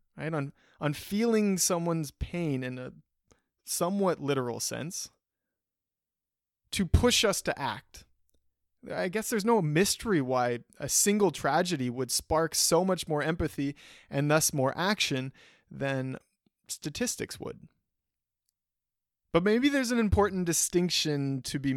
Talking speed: 125 wpm